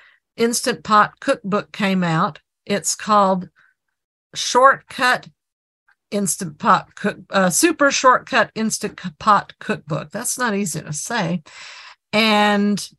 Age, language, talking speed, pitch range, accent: 50-69, English, 105 wpm, 185-210 Hz, American